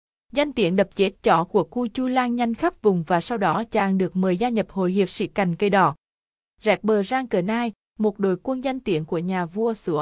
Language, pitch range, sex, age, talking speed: Vietnamese, 185-235 Hz, female, 20-39, 235 wpm